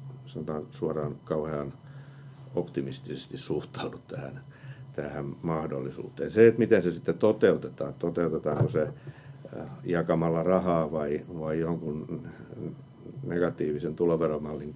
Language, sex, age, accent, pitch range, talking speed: Finnish, male, 50-69, native, 80-135 Hz, 95 wpm